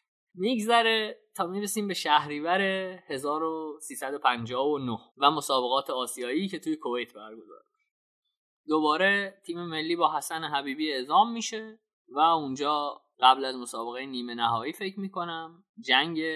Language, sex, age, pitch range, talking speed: Persian, male, 20-39, 120-170 Hz, 115 wpm